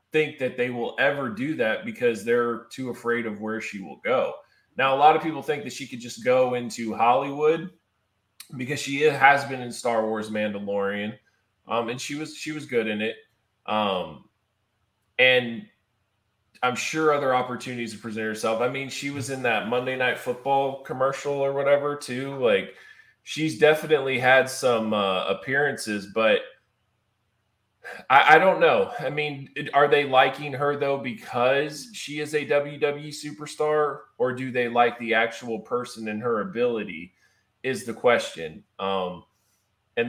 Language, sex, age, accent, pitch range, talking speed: English, male, 20-39, American, 115-145 Hz, 160 wpm